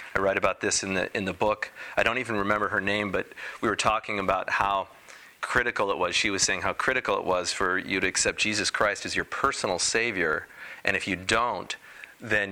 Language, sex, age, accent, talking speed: English, male, 40-59, American, 220 wpm